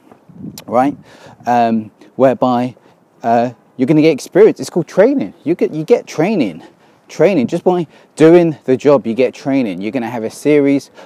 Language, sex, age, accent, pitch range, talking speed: English, male, 30-49, British, 120-160 Hz, 165 wpm